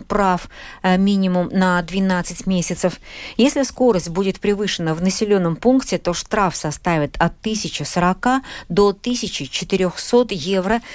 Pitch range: 155-195 Hz